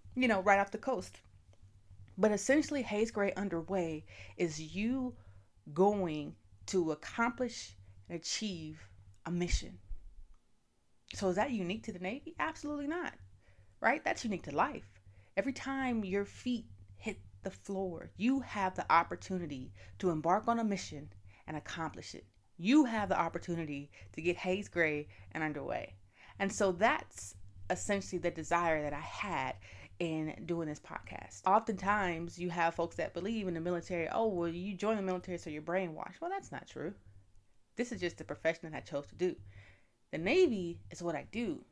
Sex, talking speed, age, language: female, 165 wpm, 30-49, English